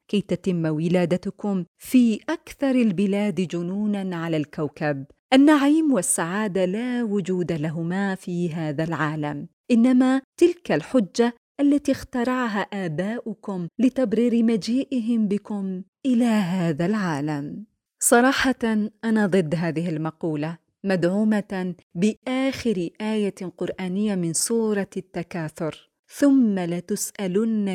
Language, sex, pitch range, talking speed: Arabic, female, 175-235 Hz, 95 wpm